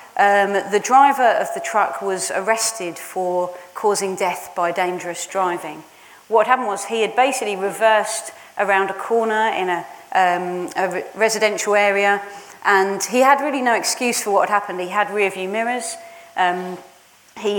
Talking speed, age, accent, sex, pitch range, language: 165 wpm, 30-49, British, female, 180-220 Hz, English